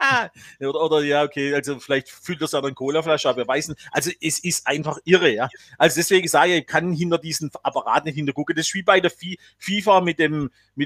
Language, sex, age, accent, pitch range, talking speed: German, male, 40-59, German, 140-170 Hz, 225 wpm